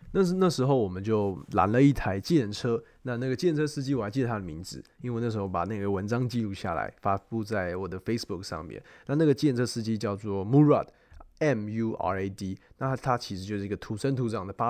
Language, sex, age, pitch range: Chinese, male, 20-39, 100-130 Hz